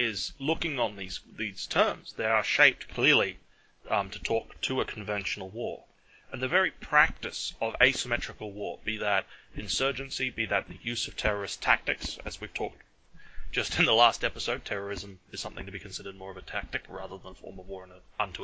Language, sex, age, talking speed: English, male, 30-49, 200 wpm